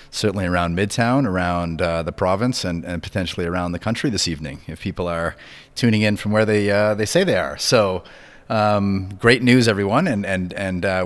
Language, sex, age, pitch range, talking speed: English, male, 30-49, 85-105 Hz, 200 wpm